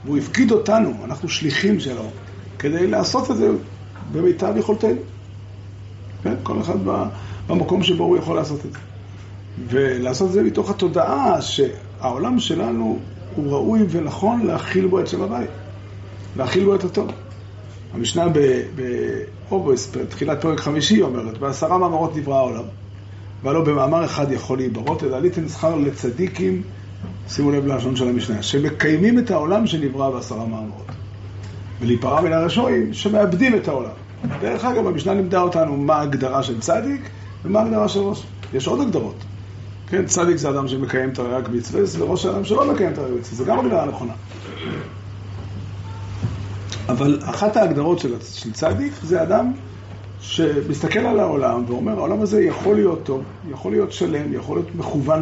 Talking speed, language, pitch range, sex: 150 wpm, Hebrew, 100-165 Hz, male